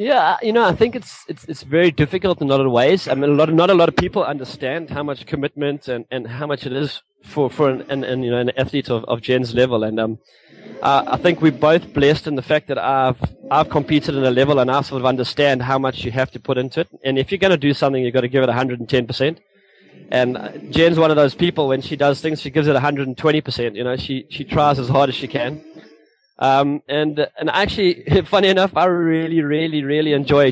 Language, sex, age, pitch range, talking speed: English, male, 20-39, 130-150 Hz, 260 wpm